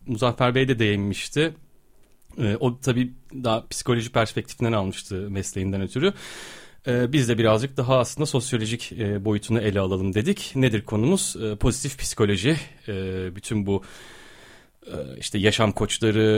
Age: 30-49